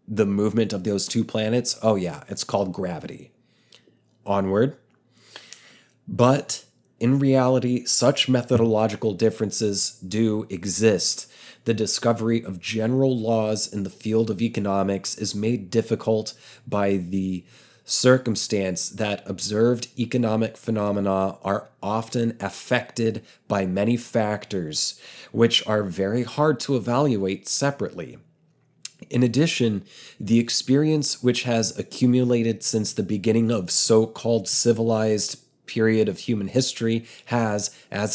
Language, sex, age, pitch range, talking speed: English, male, 30-49, 105-120 Hz, 115 wpm